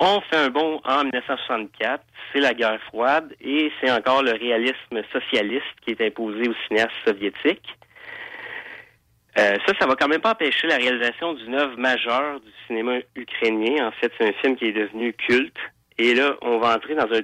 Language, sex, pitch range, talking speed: French, male, 115-140 Hz, 190 wpm